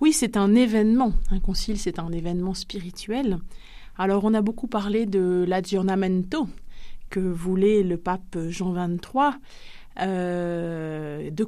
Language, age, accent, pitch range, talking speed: French, 30-49, French, 190-230 Hz, 130 wpm